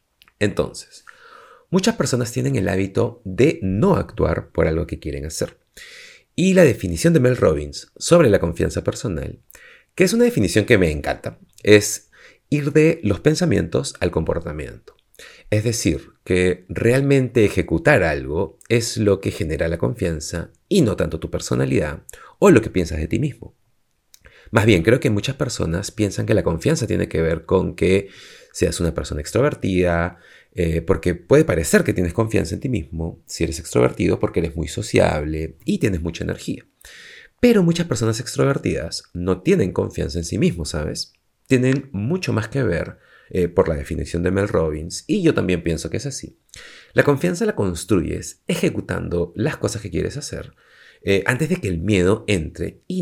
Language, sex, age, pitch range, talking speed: Spanish, male, 40-59, 85-130 Hz, 170 wpm